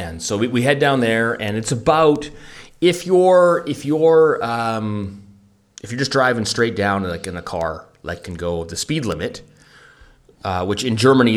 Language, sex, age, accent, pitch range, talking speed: English, male, 30-49, American, 90-115 Hz, 180 wpm